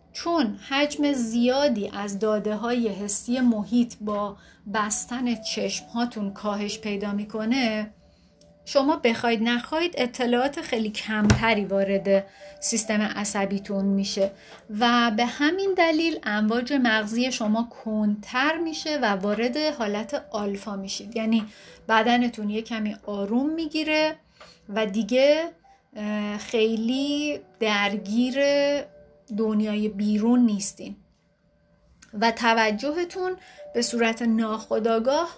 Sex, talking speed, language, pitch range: female, 95 wpm, Persian, 210-260 Hz